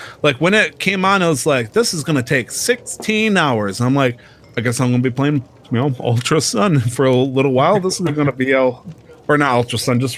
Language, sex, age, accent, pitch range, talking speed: English, male, 30-49, American, 120-155 Hz, 235 wpm